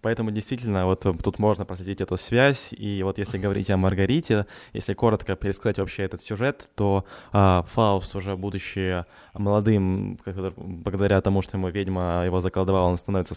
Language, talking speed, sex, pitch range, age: Ukrainian, 160 wpm, male, 90-105 Hz, 20-39